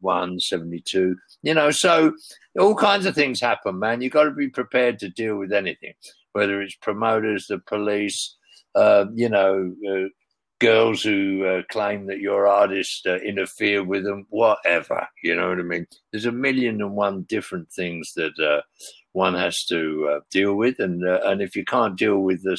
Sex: male